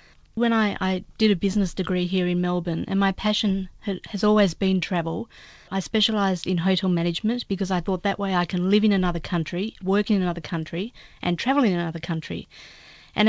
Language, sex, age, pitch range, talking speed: English, female, 40-59, 175-205 Hz, 195 wpm